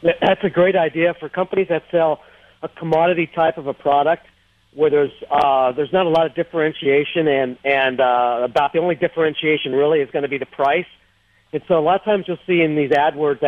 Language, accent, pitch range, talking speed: English, American, 135-170 Hz, 215 wpm